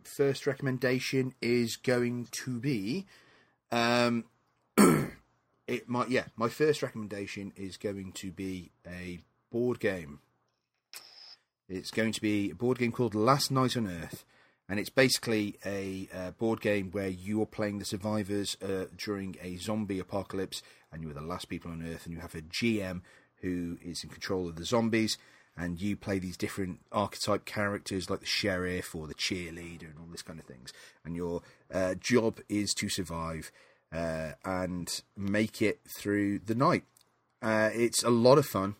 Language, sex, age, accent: English, male, 30-49, British